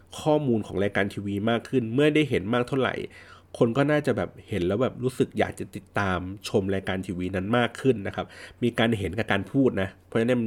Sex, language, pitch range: male, Thai, 95-125 Hz